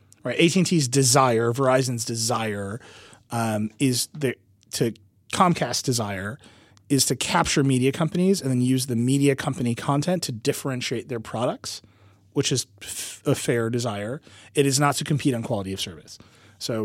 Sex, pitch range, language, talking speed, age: male, 110-140 Hz, English, 155 wpm, 30-49